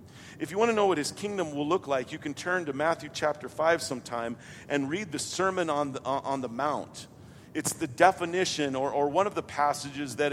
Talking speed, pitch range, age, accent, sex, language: 215 wpm, 135-180 Hz, 50-69, American, male, English